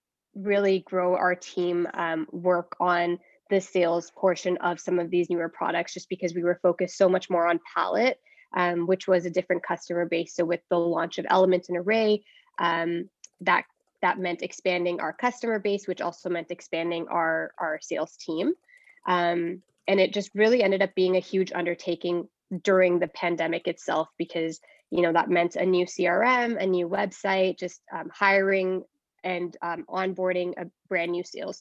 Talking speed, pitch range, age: 175 wpm, 175-190 Hz, 20-39